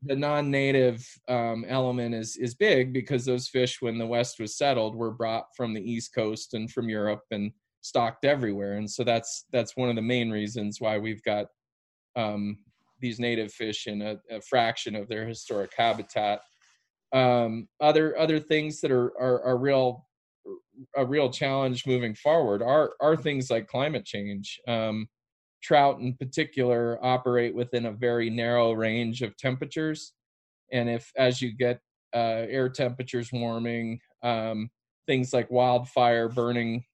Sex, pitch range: male, 115-130 Hz